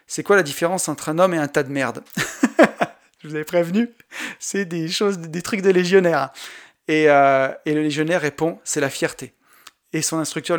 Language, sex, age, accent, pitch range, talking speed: French, male, 30-49, French, 145-180 Hz, 220 wpm